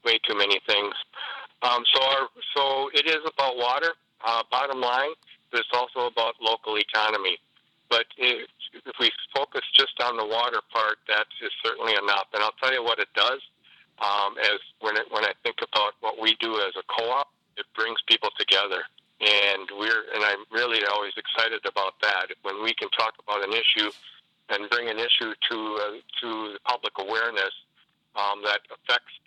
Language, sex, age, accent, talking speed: English, male, 50-69, American, 180 wpm